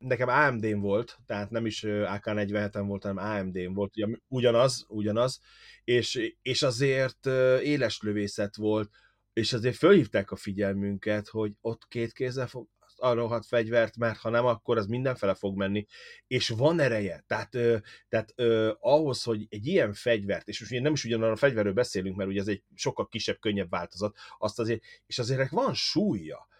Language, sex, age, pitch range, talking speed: Hungarian, male, 30-49, 105-130 Hz, 160 wpm